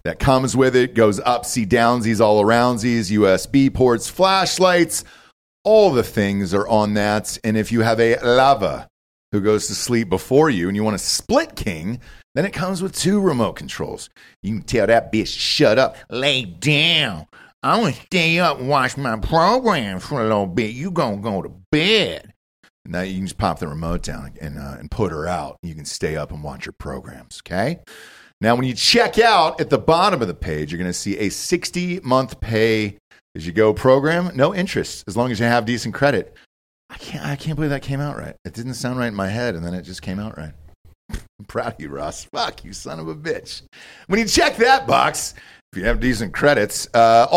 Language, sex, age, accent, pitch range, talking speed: English, male, 40-59, American, 105-150 Hz, 210 wpm